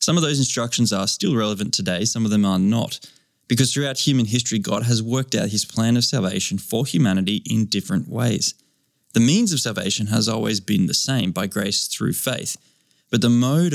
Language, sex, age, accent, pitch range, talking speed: English, male, 20-39, Australian, 105-130 Hz, 200 wpm